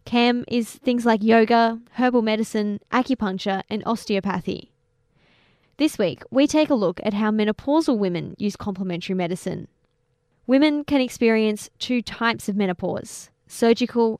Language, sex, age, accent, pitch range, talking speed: English, female, 10-29, Australian, 195-240 Hz, 130 wpm